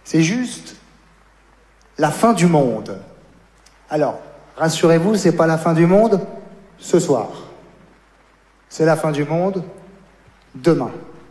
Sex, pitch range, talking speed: male, 155-195 Hz, 115 wpm